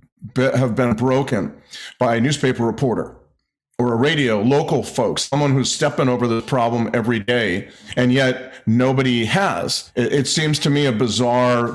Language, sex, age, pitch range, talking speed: English, male, 40-59, 120-135 Hz, 160 wpm